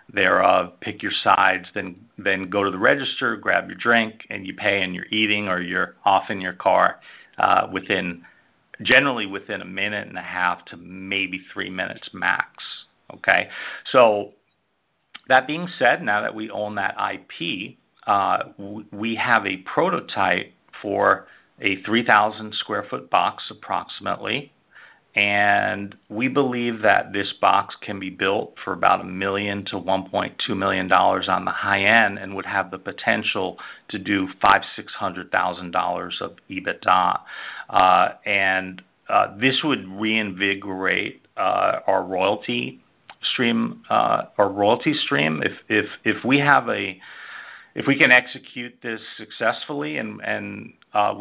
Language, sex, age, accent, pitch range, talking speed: English, male, 50-69, American, 95-110 Hz, 150 wpm